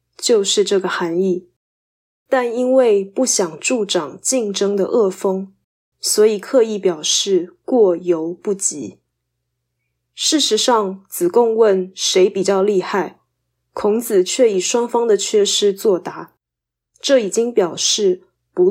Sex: female